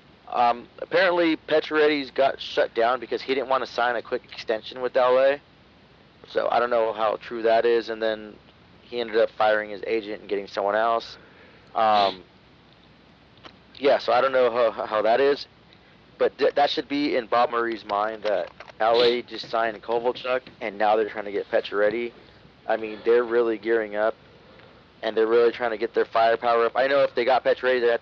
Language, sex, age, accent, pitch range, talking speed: English, male, 30-49, American, 105-125 Hz, 195 wpm